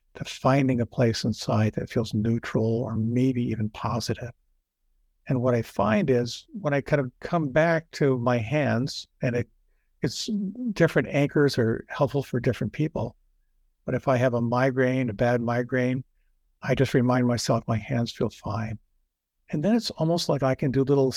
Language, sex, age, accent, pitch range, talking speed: English, male, 50-69, American, 110-135 Hz, 175 wpm